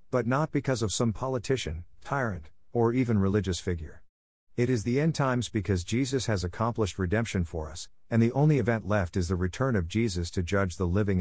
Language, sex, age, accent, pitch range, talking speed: English, male, 50-69, American, 90-115 Hz, 200 wpm